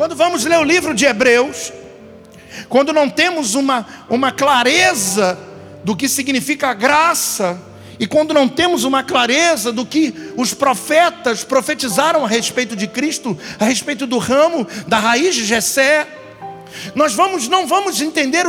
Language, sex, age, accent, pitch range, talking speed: Portuguese, male, 50-69, Brazilian, 245-335 Hz, 150 wpm